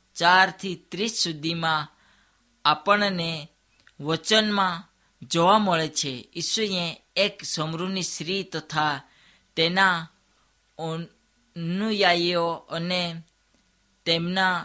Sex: female